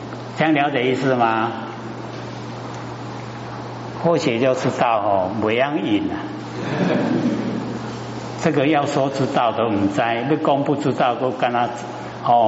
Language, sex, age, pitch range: Chinese, male, 60-79, 110-140 Hz